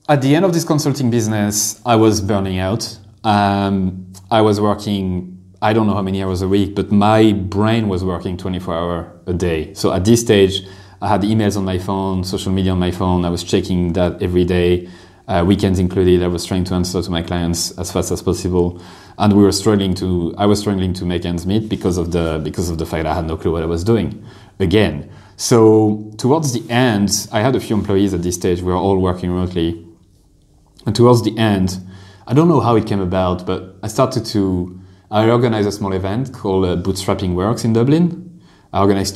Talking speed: 210 wpm